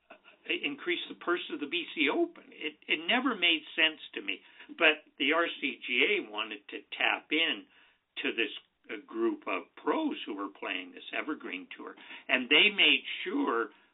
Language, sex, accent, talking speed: English, male, American, 160 wpm